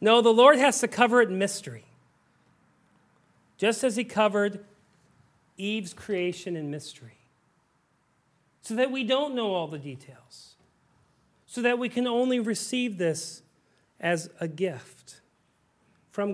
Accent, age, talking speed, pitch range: American, 40-59, 130 wpm, 145-215 Hz